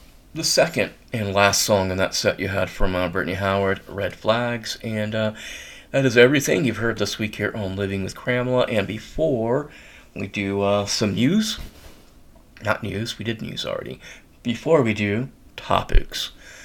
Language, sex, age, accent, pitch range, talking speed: English, male, 30-49, American, 95-125 Hz, 170 wpm